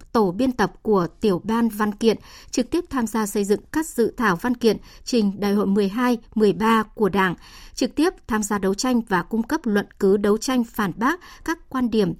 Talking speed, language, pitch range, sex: 210 wpm, Vietnamese, 200-245 Hz, male